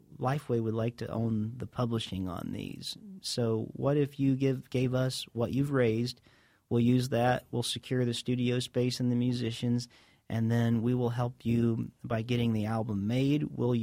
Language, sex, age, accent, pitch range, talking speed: English, male, 40-59, American, 115-130 Hz, 180 wpm